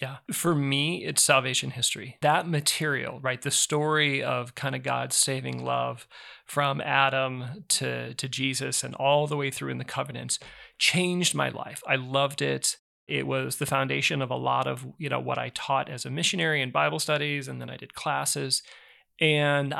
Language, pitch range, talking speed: English, 135-155 Hz, 185 wpm